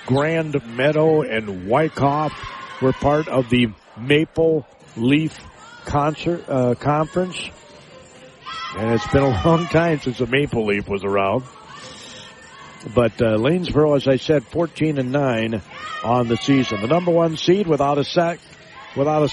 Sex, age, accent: male, 50-69, American